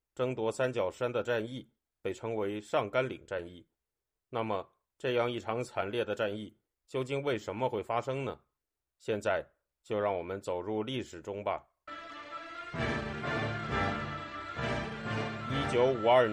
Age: 30-49